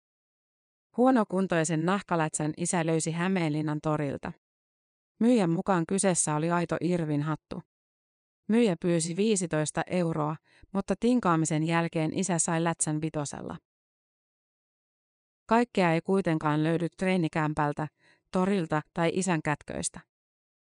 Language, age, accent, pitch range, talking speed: Finnish, 30-49, native, 155-190 Hz, 95 wpm